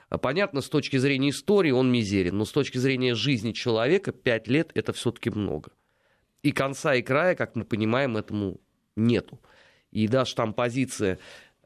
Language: Russian